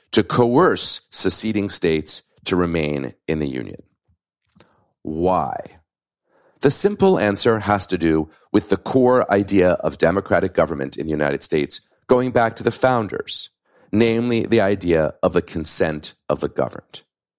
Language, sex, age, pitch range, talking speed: English, male, 40-59, 90-135 Hz, 140 wpm